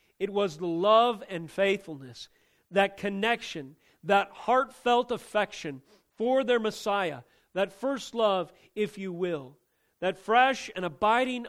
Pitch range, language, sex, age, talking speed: 170-215 Hz, English, male, 40-59, 125 wpm